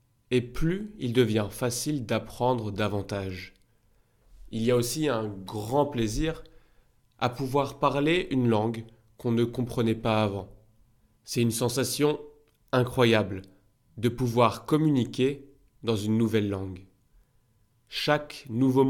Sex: male